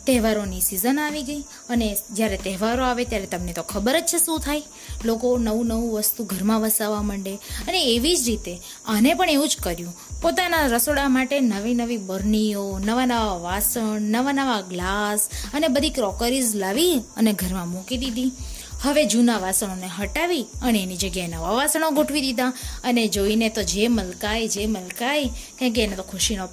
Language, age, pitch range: Gujarati, 20-39, 210-275 Hz